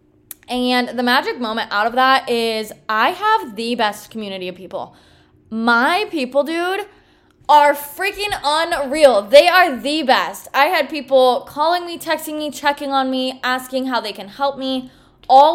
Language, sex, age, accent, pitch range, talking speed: English, female, 10-29, American, 225-290 Hz, 160 wpm